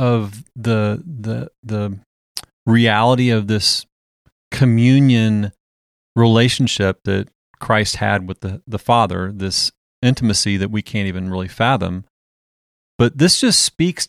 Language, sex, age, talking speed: English, male, 30-49, 120 wpm